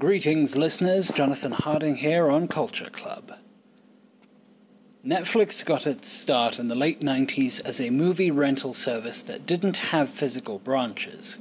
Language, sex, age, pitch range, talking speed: English, male, 30-49, 135-225 Hz, 135 wpm